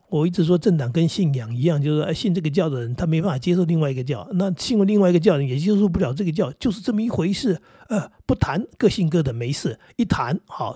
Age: 60-79